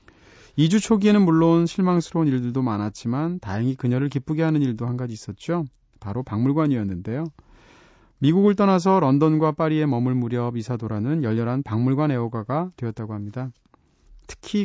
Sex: male